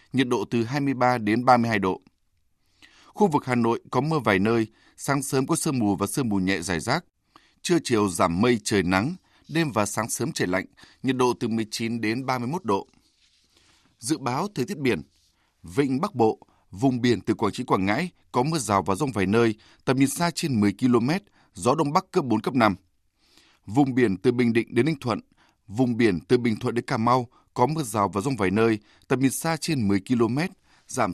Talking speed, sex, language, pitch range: 210 wpm, male, Vietnamese, 105-135 Hz